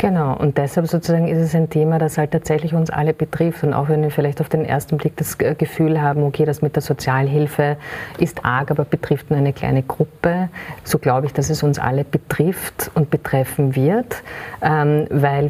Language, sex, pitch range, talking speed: German, female, 135-155 Hz, 200 wpm